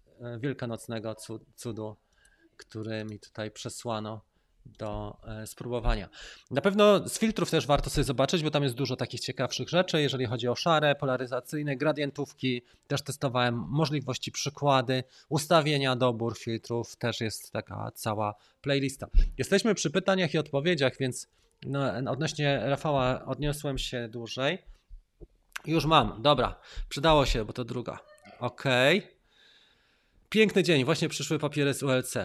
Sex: male